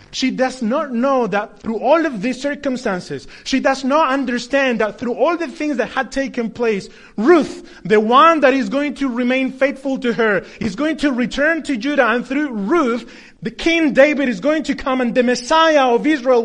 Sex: male